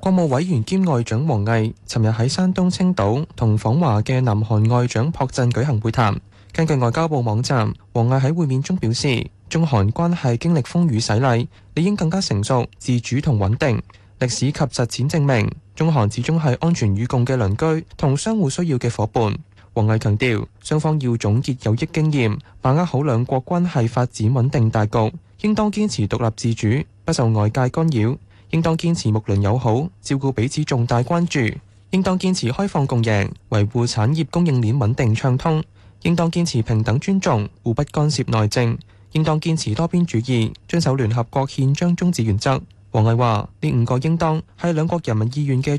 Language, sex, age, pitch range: Chinese, male, 20-39, 110-155 Hz